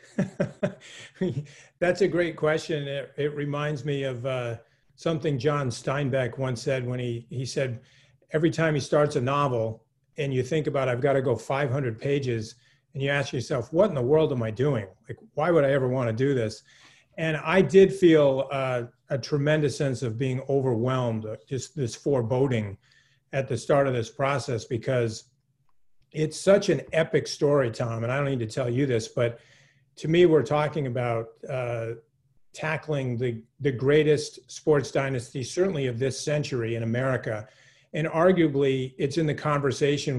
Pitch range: 125-150 Hz